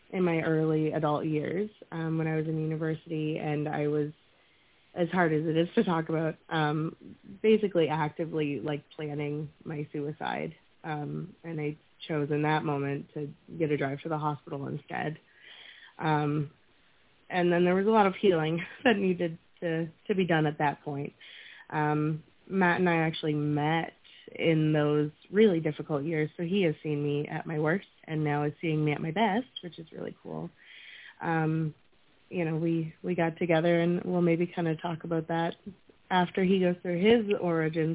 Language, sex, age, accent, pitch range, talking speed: English, female, 20-39, American, 150-175 Hz, 180 wpm